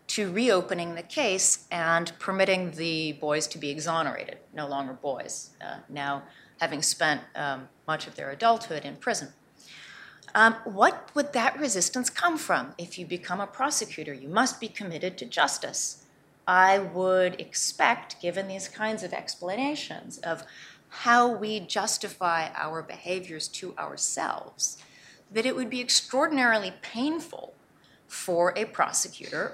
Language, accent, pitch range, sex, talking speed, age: English, American, 160-215 Hz, female, 140 wpm, 30-49